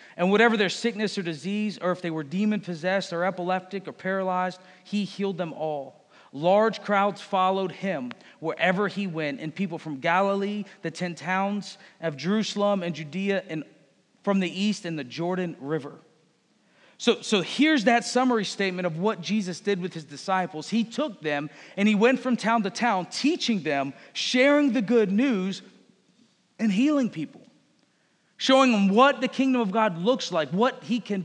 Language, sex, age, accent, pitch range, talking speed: English, male, 40-59, American, 185-245 Hz, 170 wpm